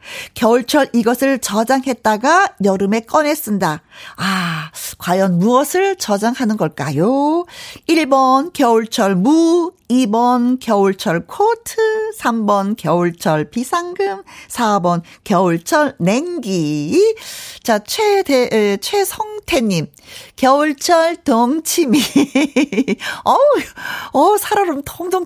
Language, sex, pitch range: Korean, female, 200-315 Hz